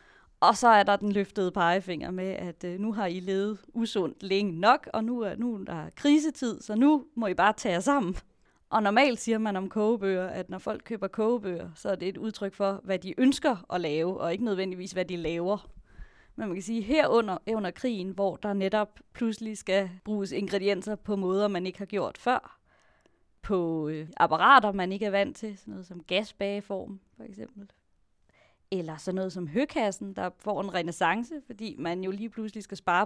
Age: 20-39